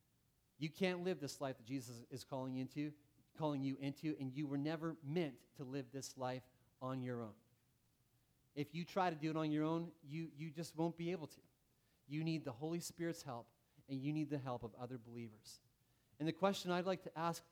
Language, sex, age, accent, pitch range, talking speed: English, male, 30-49, American, 135-175 Hz, 215 wpm